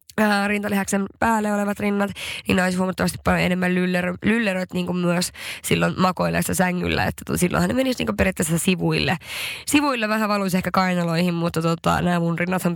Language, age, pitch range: Finnish, 20-39, 175-215 Hz